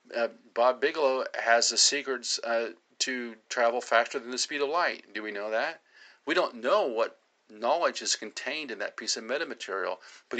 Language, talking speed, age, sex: English, 185 wpm, 50-69, male